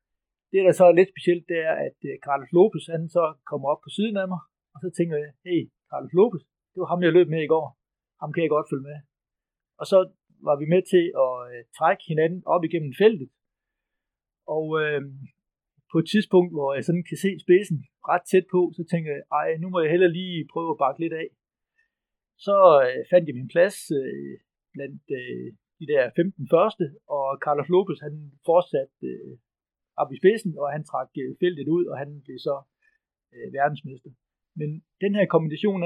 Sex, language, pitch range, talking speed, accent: male, Danish, 145-180 Hz, 195 wpm, native